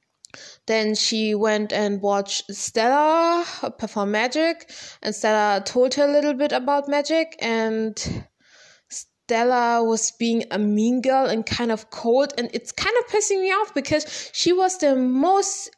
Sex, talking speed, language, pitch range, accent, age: female, 150 wpm, German, 210-280 Hz, German, 20-39